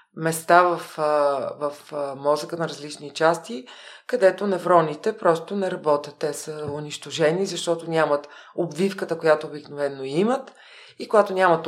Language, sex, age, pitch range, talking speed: Bulgarian, female, 40-59, 155-190 Hz, 125 wpm